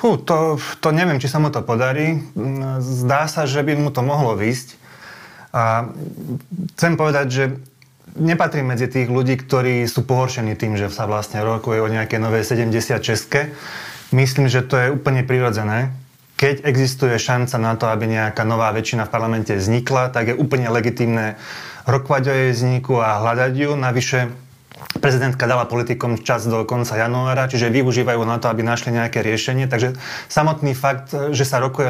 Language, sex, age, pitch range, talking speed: Slovak, male, 30-49, 120-135 Hz, 165 wpm